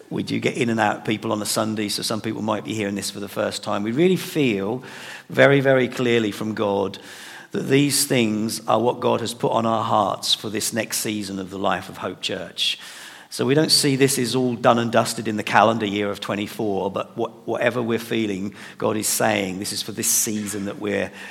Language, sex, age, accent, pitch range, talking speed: English, male, 50-69, British, 105-125 Hz, 230 wpm